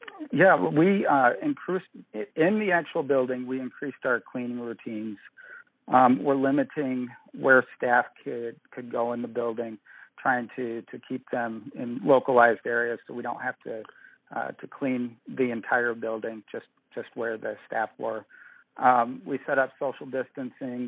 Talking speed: 160 wpm